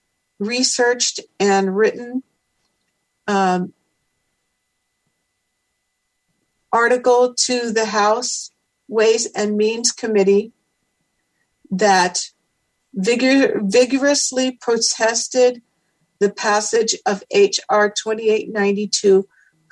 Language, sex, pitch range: English, female, 205-240 Hz